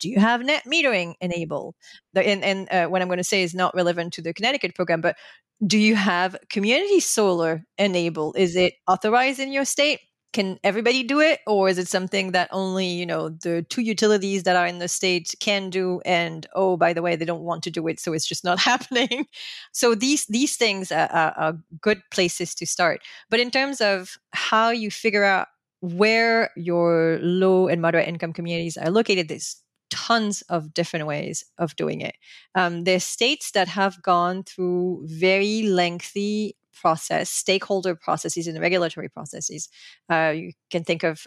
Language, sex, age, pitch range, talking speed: English, female, 30-49, 175-215 Hz, 185 wpm